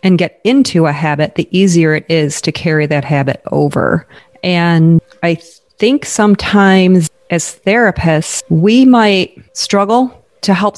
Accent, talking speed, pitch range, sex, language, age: American, 145 wpm, 160-195 Hz, female, English, 30-49